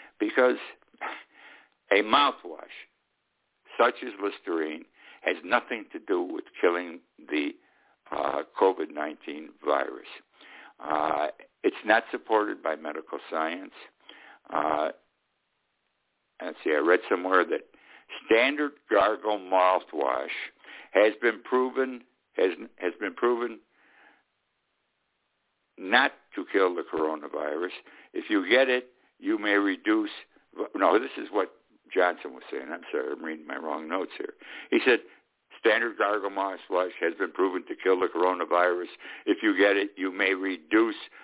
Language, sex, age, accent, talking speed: English, male, 60-79, American, 125 wpm